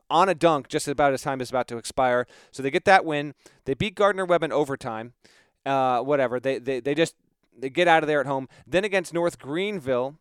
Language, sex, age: English, male, 30-49